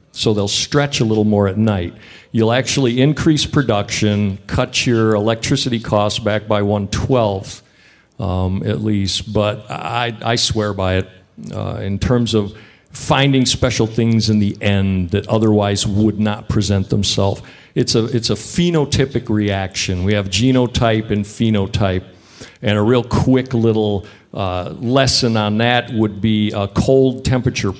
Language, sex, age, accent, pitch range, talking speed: English, male, 50-69, American, 105-125 Hz, 150 wpm